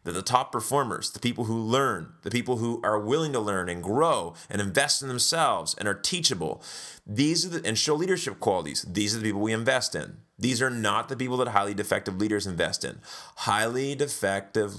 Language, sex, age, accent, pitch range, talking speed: English, male, 30-49, American, 100-125 Hz, 205 wpm